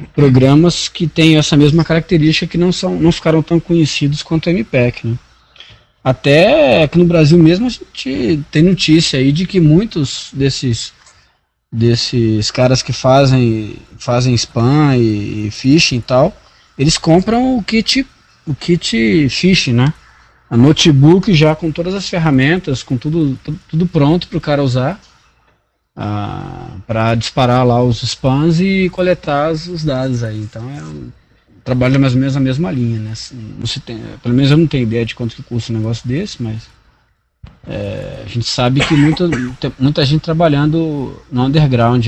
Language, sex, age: Portuguese, male, 20-39